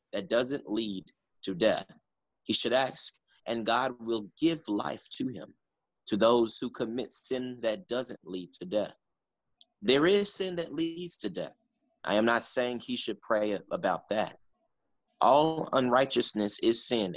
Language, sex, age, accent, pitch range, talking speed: English, male, 30-49, American, 110-155 Hz, 155 wpm